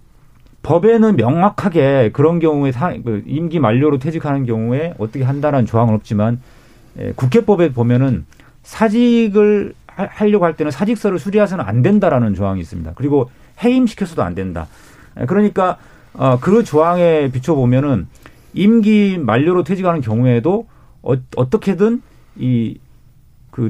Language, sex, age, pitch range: Korean, male, 40-59, 120-185 Hz